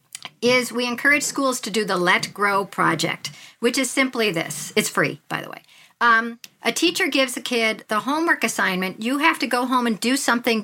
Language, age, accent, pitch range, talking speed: English, 50-69, American, 225-280 Hz, 205 wpm